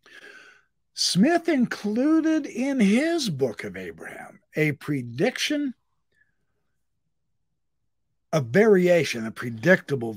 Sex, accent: male, American